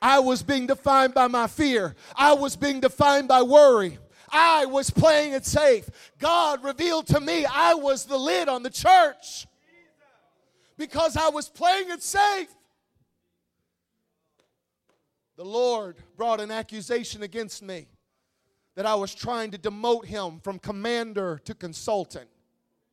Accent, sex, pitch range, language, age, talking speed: American, male, 175-260 Hz, English, 40-59, 140 wpm